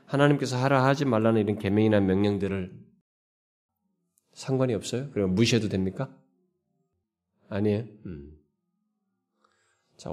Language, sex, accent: Korean, male, native